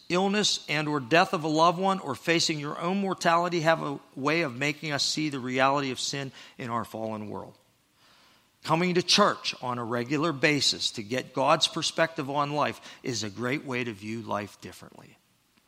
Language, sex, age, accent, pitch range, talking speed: English, male, 50-69, American, 110-150 Hz, 190 wpm